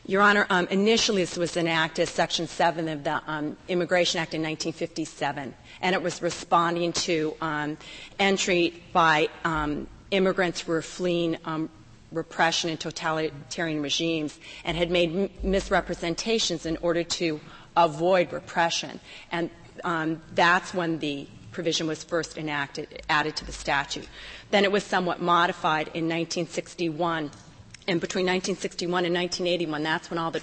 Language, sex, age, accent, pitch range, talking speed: English, female, 40-59, American, 155-175 Hz, 145 wpm